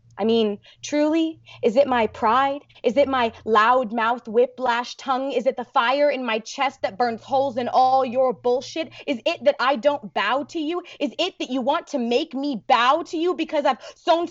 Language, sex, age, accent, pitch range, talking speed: English, female, 20-39, American, 225-285 Hz, 210 wpm